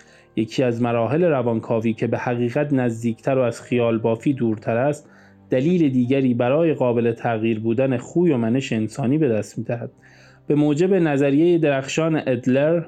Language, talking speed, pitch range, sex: Persian, 155 wpm, 120-160 Hz, male